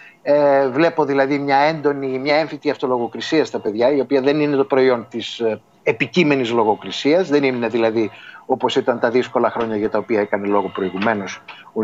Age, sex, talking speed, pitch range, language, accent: 30-49, male, 170 wpm, 135-200 Hz, Greek, native